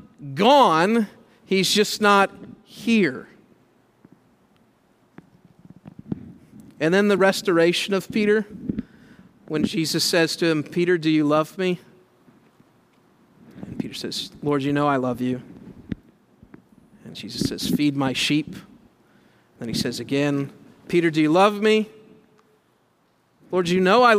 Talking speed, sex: 120 wpm, male